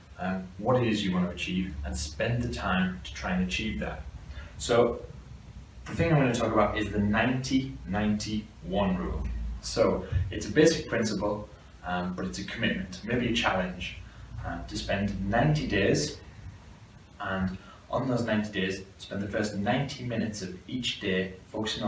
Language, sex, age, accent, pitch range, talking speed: English, male, 20-39, British, 90-105 Hz, 170 wpm